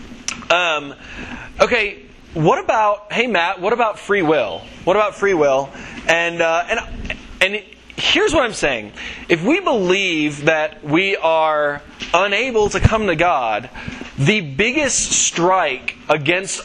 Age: 20-39